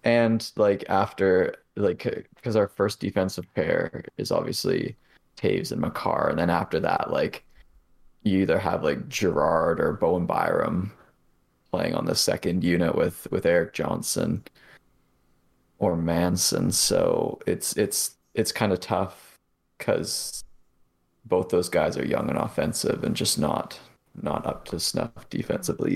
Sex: male